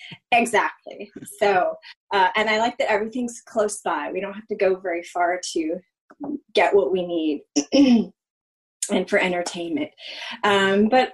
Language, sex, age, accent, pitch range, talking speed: English, female, 30-49, American, 185-235 Hz, 145 wpm